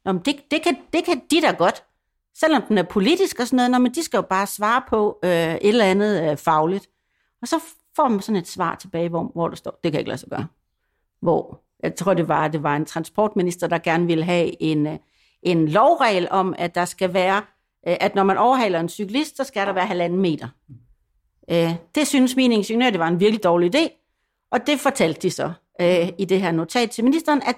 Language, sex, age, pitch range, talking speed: Danish, female, 60-79, 185-255 Hz, 230 wpm